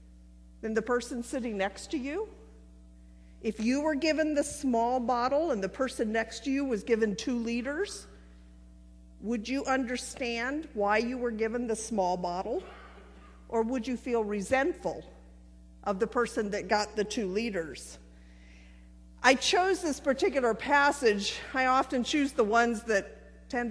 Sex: female